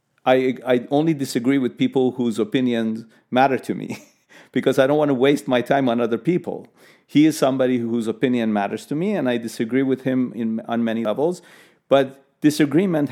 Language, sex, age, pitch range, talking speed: English, male, 40-59, 115-135 Hz, 185 wpm